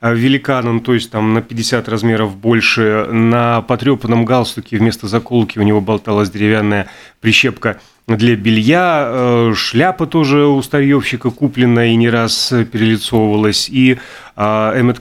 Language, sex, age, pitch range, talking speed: Russian, male, 30-49, 110-135 Hz, 125 wpm